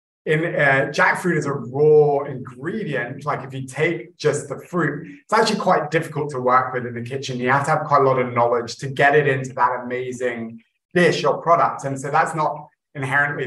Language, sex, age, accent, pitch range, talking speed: English, male, 20-39, British, 120-145 Hz, 210 wpm